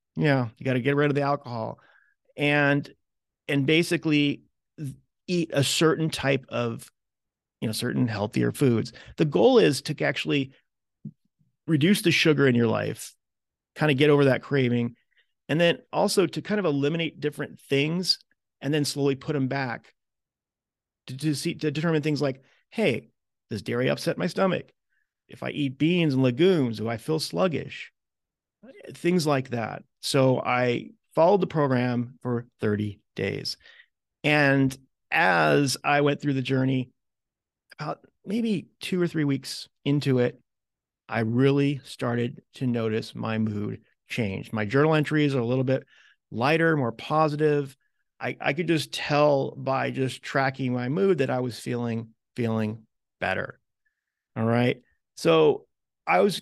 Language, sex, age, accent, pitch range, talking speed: English, male, 40-59, American, 125-155 Hz, 150 wpm